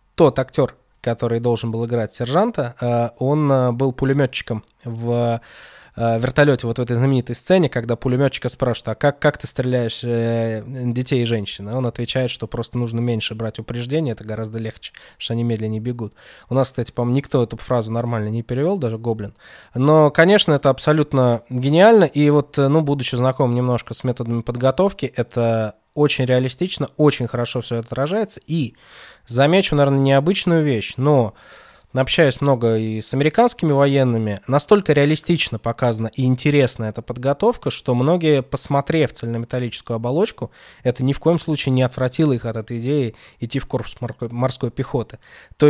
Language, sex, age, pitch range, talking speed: Russian, male, 20-39, 115-145 Hz, 155 wpm